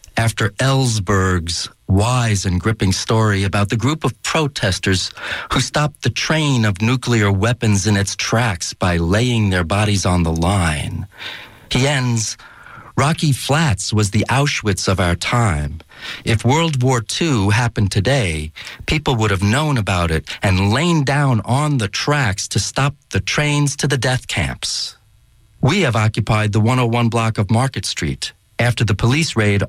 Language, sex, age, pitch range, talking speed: English, male, 40-59, 100-125 Hz, 155 wpm